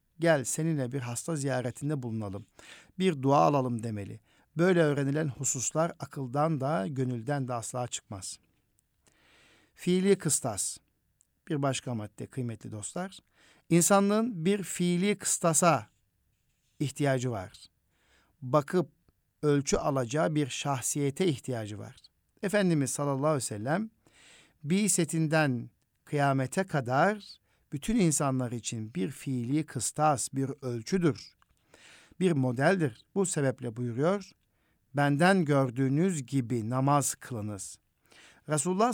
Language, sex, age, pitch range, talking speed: Turkish, male, 60-79, 125-165 Hz, 105 wpm